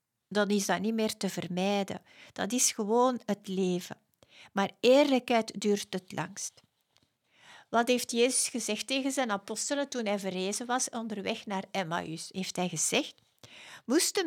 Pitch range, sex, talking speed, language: 195-250 Hz, female, 145 wpm, Dutch